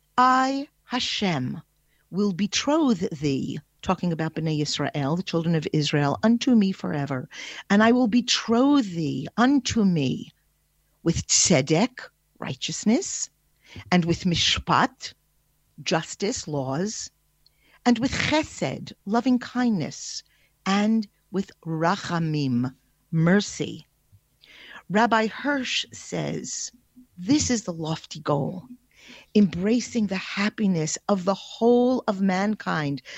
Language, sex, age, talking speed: English, female, 50-69, 100 wpm